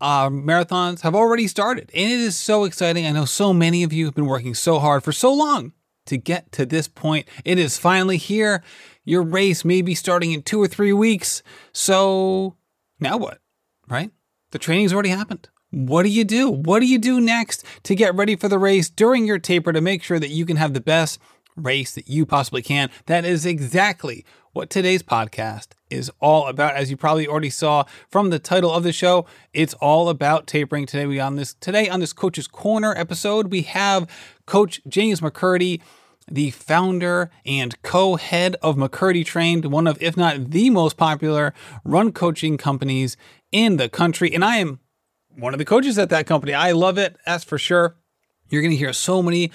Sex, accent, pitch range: male, American, 150-190 Hz